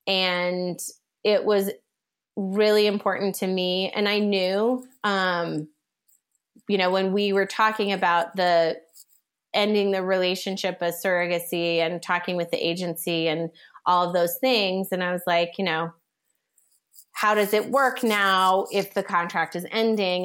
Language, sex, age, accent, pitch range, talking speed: English, female, 30-49, American, 175-210 Hz, 150 wpm